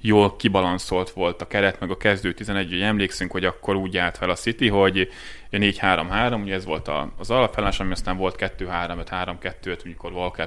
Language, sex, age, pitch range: Hungarian, male, 20-39, 90-105 Hz